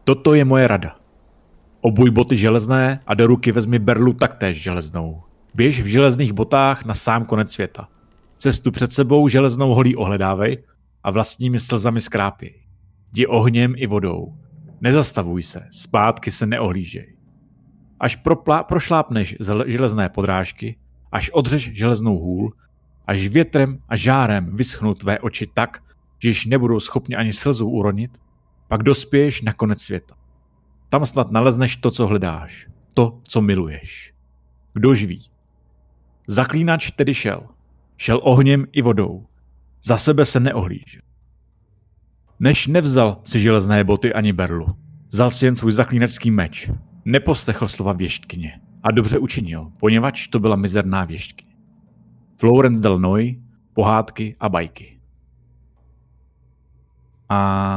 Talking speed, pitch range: 130 wpm, 90-130 Hz